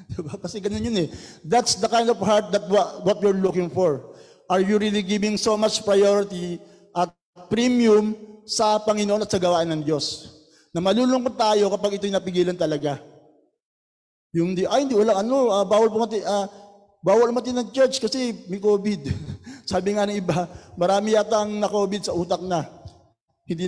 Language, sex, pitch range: Filipino, male, 175-210 Hz